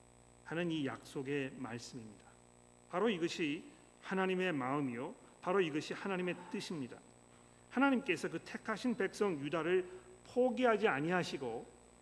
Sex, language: male, Korean